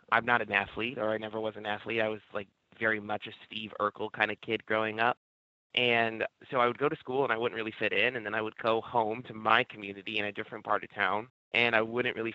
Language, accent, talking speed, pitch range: English, American, 265 wpm, 110-125 Hz